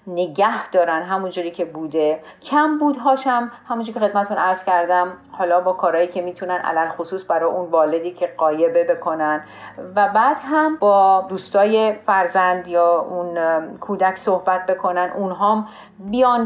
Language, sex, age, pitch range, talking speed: Persian, female, 40-59, 175-225 Hz, 150 wpm